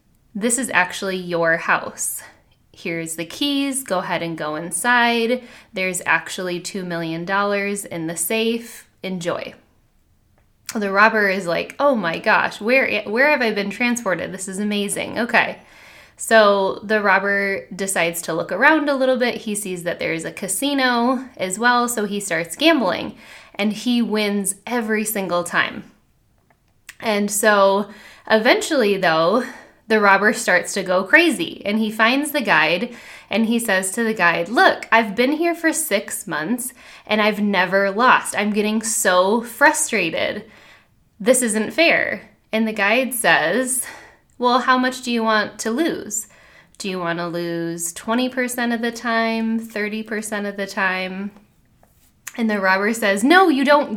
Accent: American